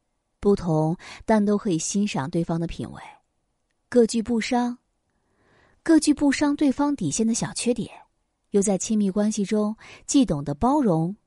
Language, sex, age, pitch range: Chinese, female, 30-49, 170-230 Hz